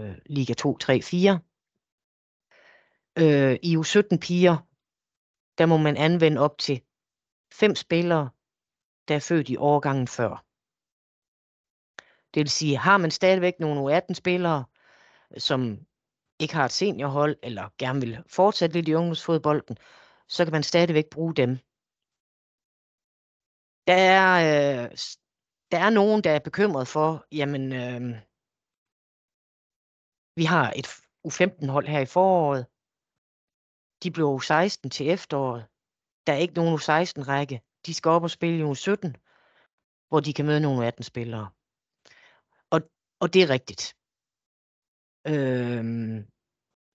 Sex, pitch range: female, 130-170 Hz